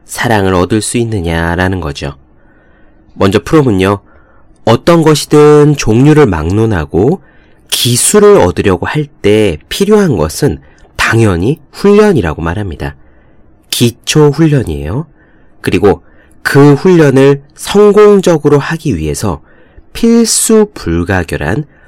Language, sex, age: Korean, male, 30-49